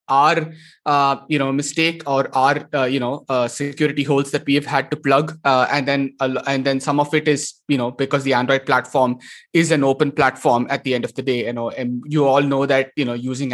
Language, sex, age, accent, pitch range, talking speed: English, male, 20-39, Indian, 135-155 Hz, 240 wpm